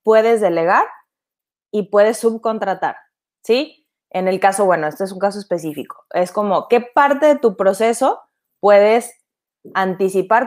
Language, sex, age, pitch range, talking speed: Spanish, female, 20-39, 190-240 Hz, 140 wpm